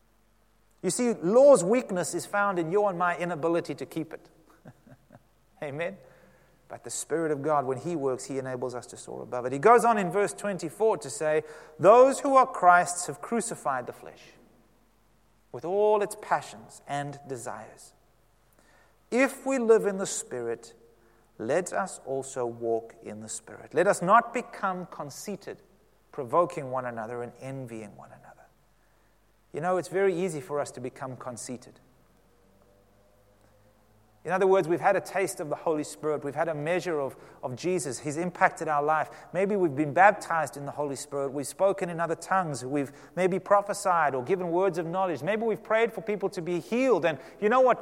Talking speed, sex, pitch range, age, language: 180 wpm, male, 125-195 Hz, 30-49, English